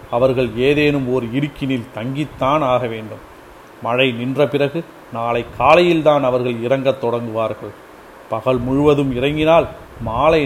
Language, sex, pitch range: Tamil, male, 120-145 Hz